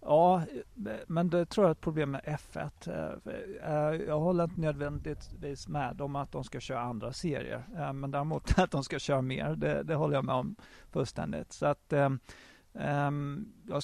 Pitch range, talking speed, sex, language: 125-150 Hz, 180 wpm, male, Swedish